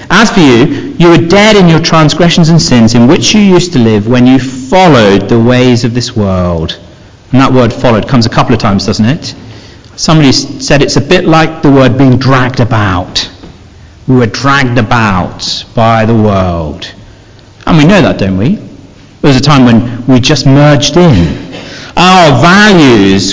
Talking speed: 185 wpm